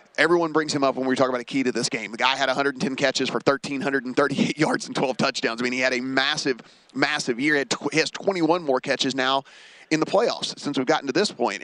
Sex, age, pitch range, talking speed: male, 30-49, 130-155 Hz, 240 wpm